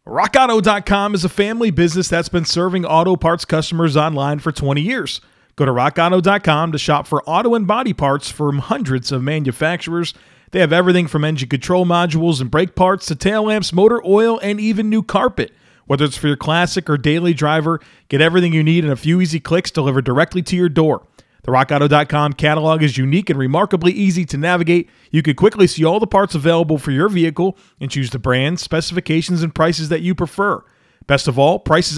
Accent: American